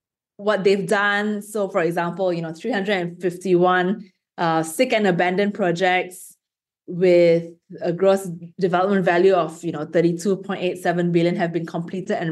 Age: 20-39